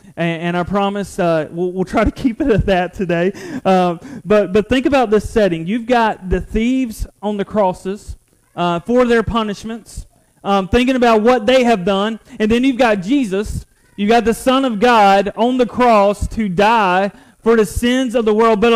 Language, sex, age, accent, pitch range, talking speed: English, male, 30-49, American, 210-260 Hz, 200 wpm